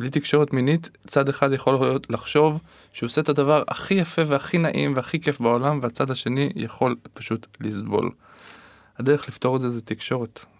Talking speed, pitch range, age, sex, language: 170 wpm, 110-140 Hz, 20-39, male, Hebrew